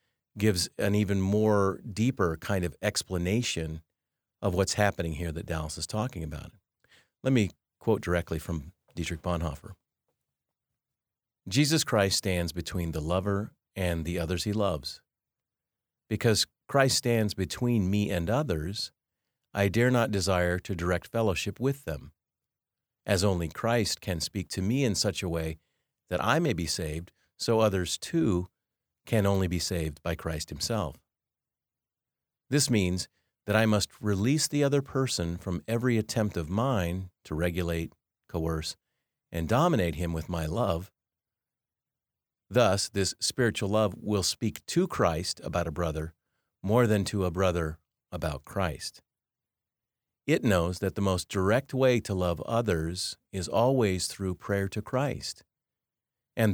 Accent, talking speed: American, 145 wpm